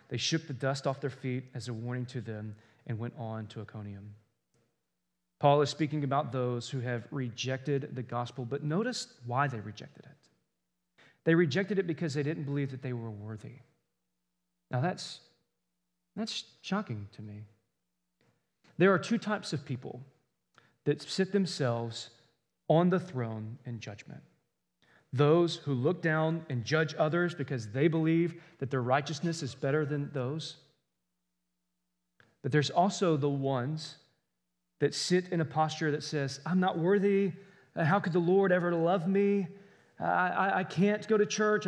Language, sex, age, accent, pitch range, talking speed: English, male, 30-49, American, 115-170 Hz, 160 wpm